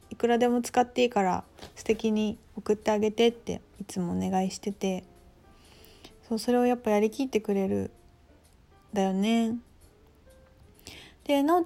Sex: female